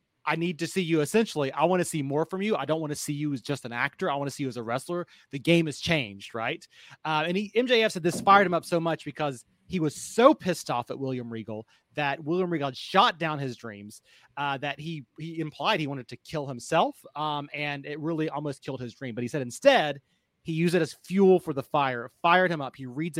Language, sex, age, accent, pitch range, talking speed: English, male, 30-49, American, 130-170 Hz, 260 wpm